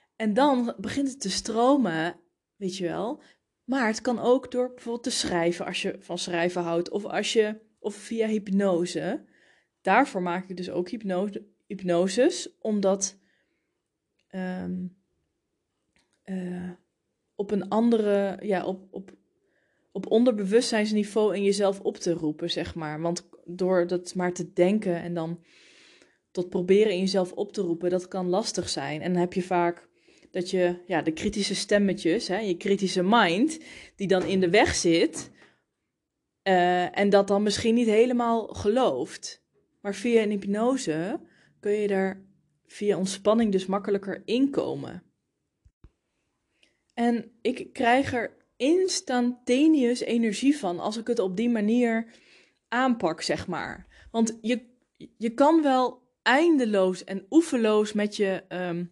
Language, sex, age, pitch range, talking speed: Dutch, female, 20-39, 180-235 Hz, 145 wpm